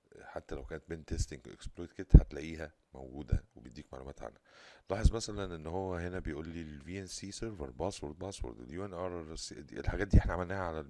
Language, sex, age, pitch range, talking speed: Arabic, male, 50-69, 70-85 Hz, 180 wpm